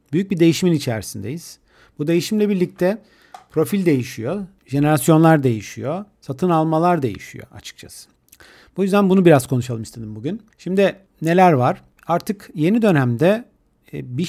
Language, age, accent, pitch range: Turkish, 50-69, native, 125-175 Hz